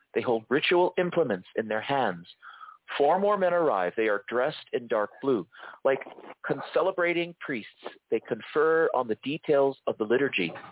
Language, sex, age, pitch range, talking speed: English, male, 40-59, 130-200 Hz, 155 wpm